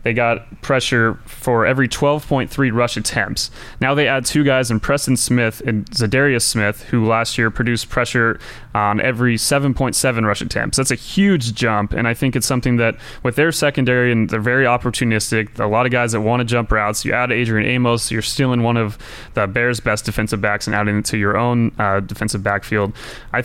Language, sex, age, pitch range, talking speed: English, male, 20-39, 110-125 Hz, 200 wpm